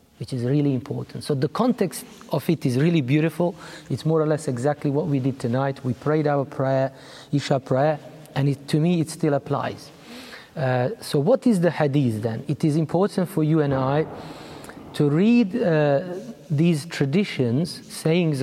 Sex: male